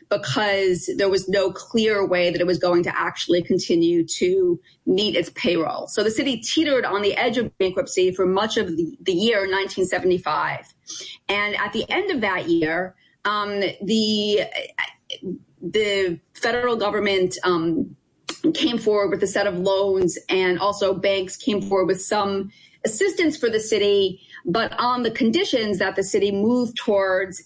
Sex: female